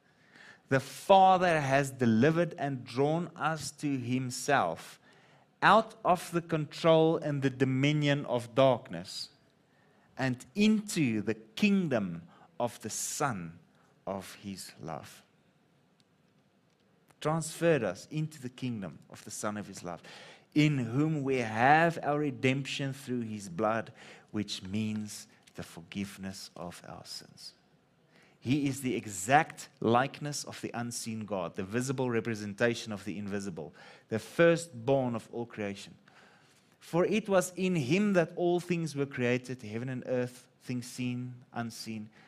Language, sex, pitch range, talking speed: English, male, 115-155 Hz, 130 wpm